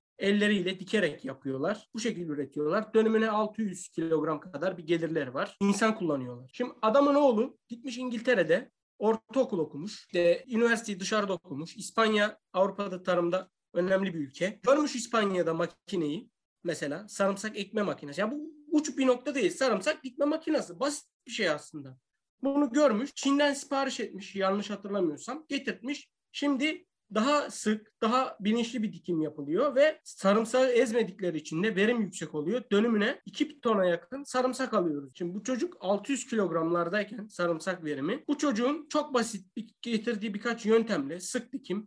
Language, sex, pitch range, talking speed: Turkish, male, 185-255 Hz, 140 wpm